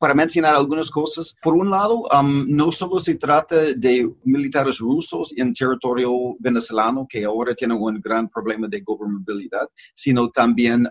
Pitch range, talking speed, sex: 115-140 Hz, 155 wpm, male